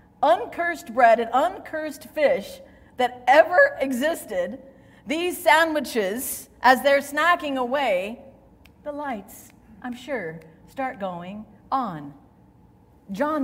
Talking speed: 100 wpm